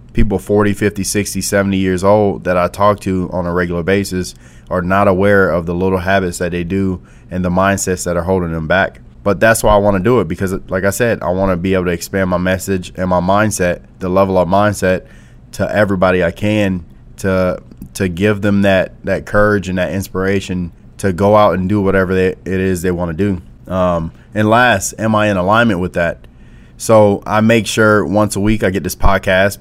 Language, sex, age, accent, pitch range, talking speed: English, male, 20-39, American, 90-100 Hz, 215 wpm